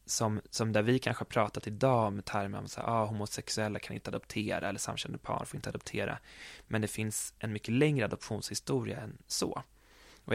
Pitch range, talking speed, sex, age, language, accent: 105-130 Hz, 185 wpm, male, 20-39, Swedish, native